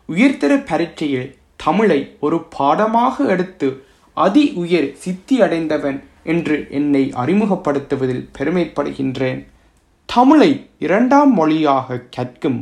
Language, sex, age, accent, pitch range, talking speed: Tamil, male, 30-49, native, 135-200 Hz, 80 wpm